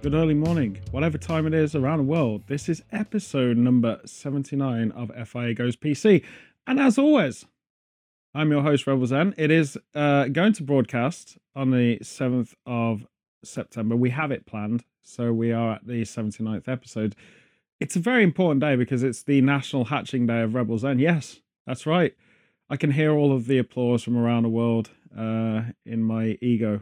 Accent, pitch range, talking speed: British, 115-150 Hz, 180 wpm